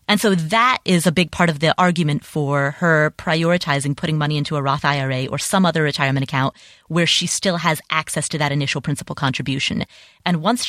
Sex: female